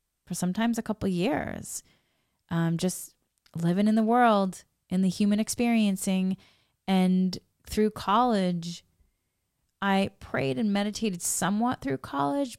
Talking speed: 120 wpm